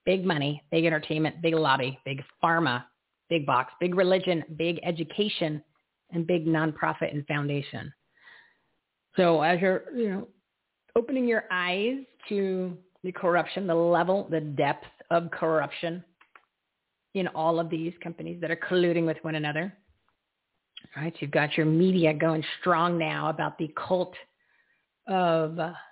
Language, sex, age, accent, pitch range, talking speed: English, female, 40-59, American, 150-175 Hz, 140 wpm